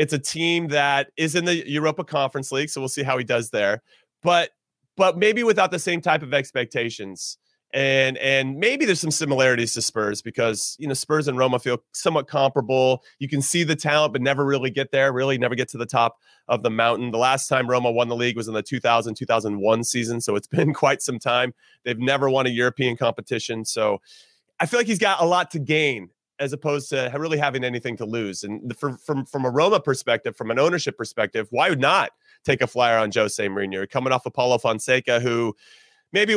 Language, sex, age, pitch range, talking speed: English, male, 30-49, 120-155 Hz, 215 wpm